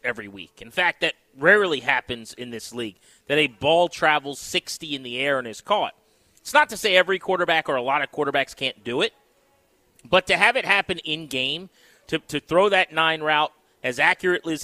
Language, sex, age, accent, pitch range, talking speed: English, male, 30-49, American, 140-190 Hz, 210 wpm